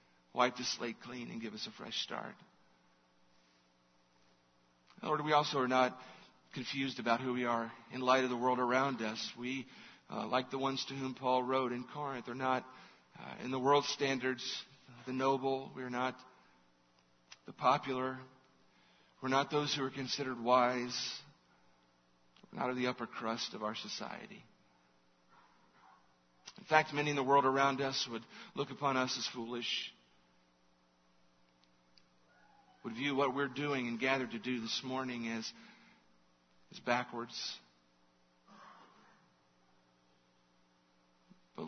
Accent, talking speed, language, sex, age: American, 140 wpm, English, male, 50-69